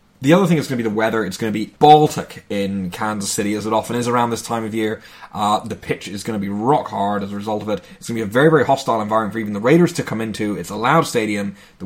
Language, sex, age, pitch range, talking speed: English, male, 20-39, 105-130 Hz, 310 wpm